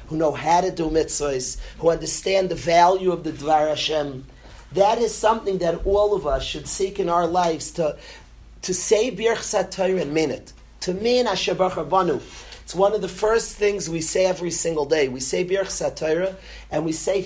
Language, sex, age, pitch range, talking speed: English, male, 40-59, 160-210 Hz, 195 wpm